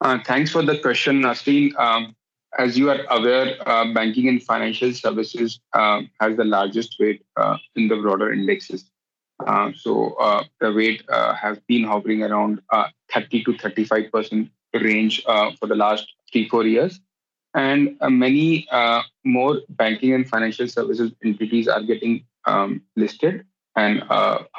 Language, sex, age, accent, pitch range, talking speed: English, male, 30-49, Indian, 110-130 Hz, 150 wpm